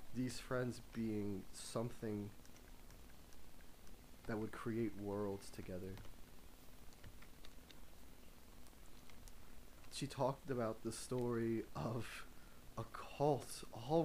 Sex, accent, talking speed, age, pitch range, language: male, American, 75 wpm, 20-39, 95-115 Hz, English